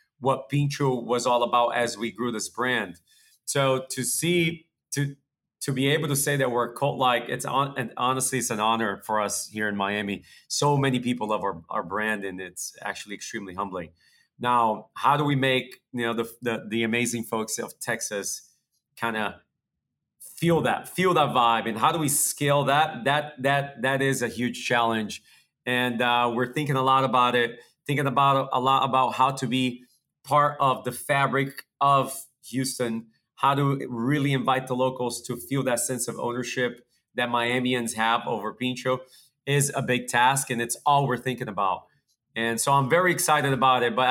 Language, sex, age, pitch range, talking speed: English, male, 40-59, 120-140 Hz, 190 wpm